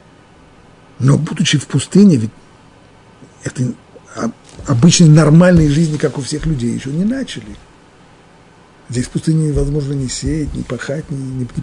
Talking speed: 125 wpm